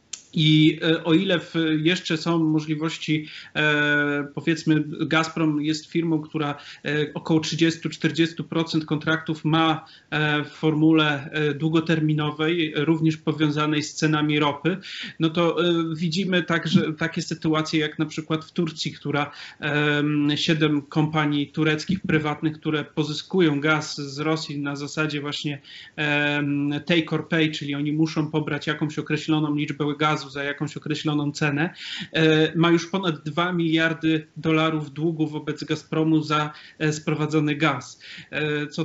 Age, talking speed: 30-49, 115 wpm